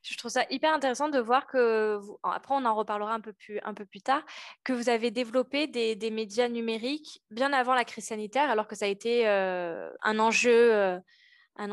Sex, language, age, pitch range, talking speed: female, French, 20-39, 210-260 Hz, 220 wpm